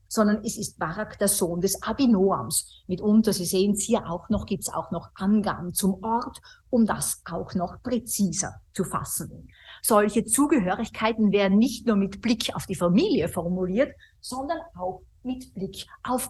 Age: 50-69